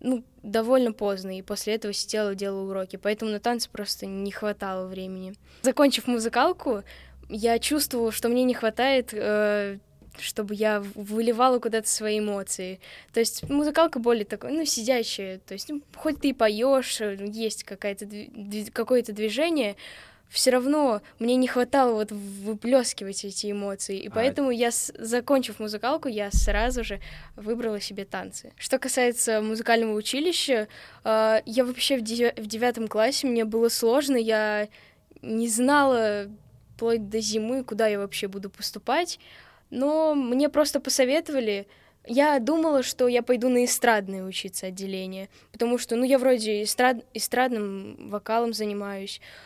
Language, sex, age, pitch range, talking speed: Russian, female, 10-29, 205-250 Hz, 140 wpm